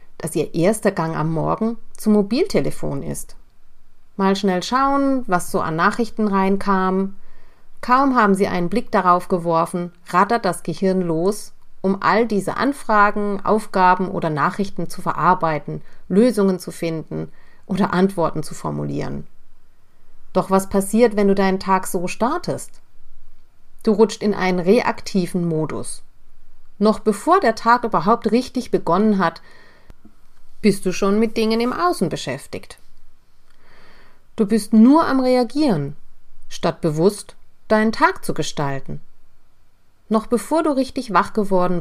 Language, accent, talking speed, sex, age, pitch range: German, German, 130 wpm, female, 40-59, 170-225 Hz